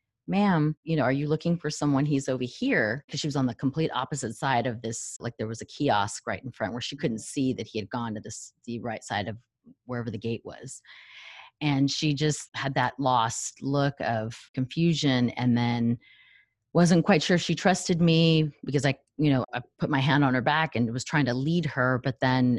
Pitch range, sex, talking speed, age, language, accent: 125-160 Hz, female, 220 wpm, 30-49, English, American